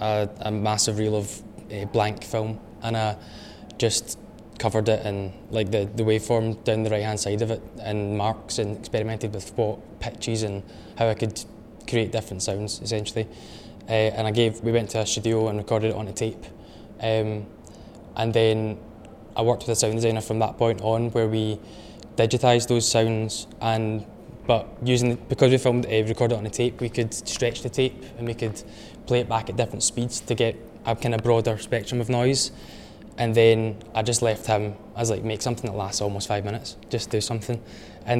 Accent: British